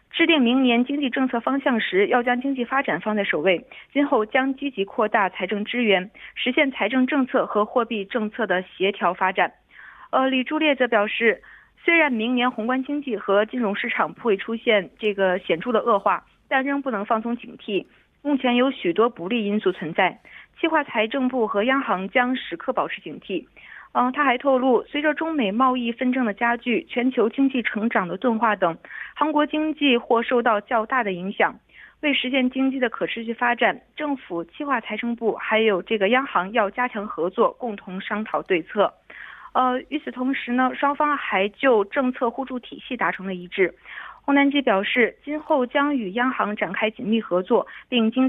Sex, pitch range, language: female, 210-265 Hz, Korean